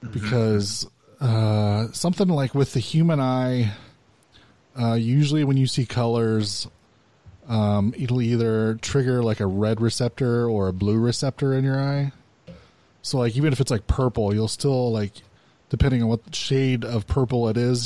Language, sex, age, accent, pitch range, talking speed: English, male, 20-39, American, 105-125 Hz, 160 wpm